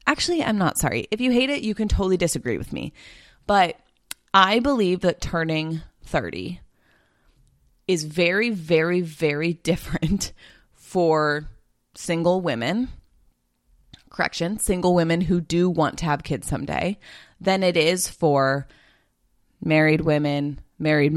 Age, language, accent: 20-39, English, American